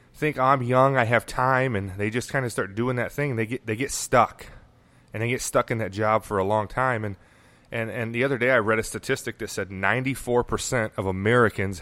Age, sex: 30-49, male